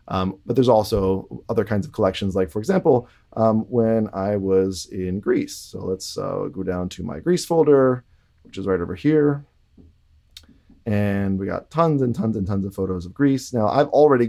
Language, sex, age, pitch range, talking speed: English, male, 30-49, 95-115 Hz, 195 wpm